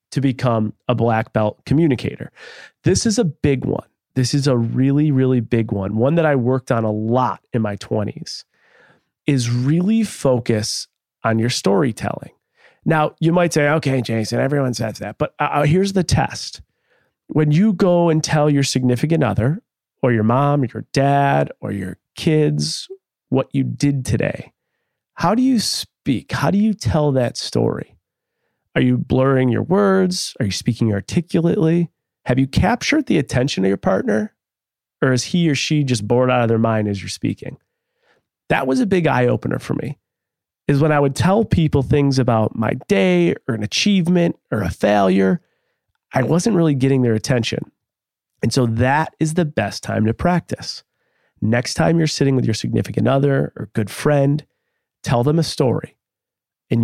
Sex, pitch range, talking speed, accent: male, 115-155 Hz, 175 wpm, American